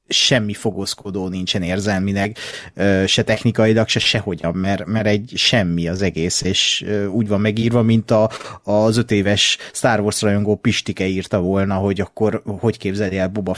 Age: 30-49